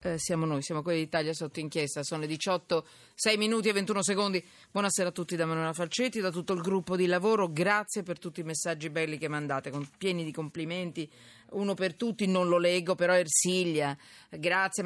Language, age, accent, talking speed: Italian, 40-59, native, 190 wpm